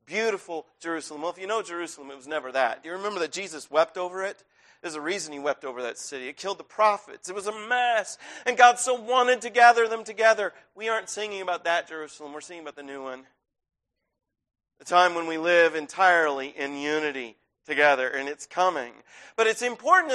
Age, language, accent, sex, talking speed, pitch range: 40-59, English, American, male, 210 wpm, 165-235 Hz